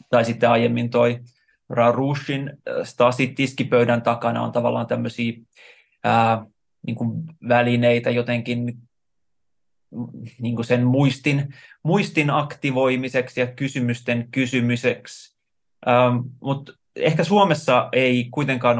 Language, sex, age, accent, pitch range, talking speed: Finnish, male, 20-39, native, 115-130 Hz, 90 wpm